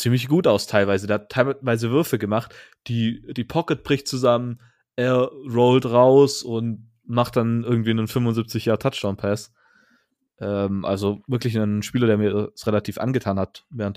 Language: German